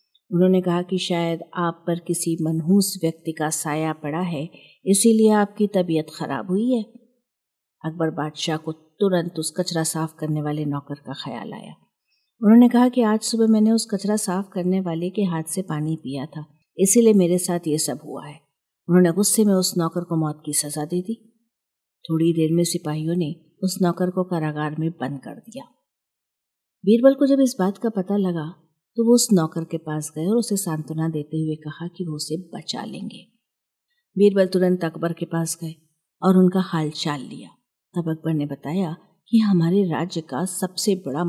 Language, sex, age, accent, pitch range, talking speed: Hindi, female, 50-69, native, 160-215 Hz, 185 wpm